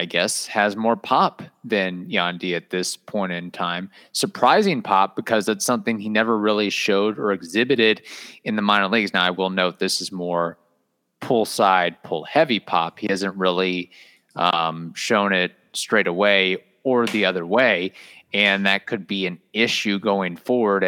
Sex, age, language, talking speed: male, 30-49, English, 165 wpm